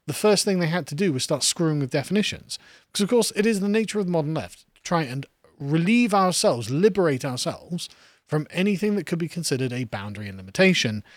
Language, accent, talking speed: English, British, 215 wpm